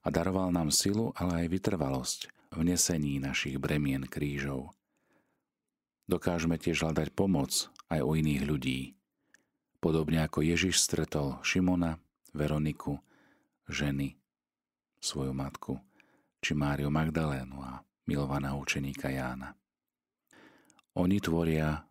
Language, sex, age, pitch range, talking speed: Slovak, male, 40-59, 70-85 Hz, 105 wpm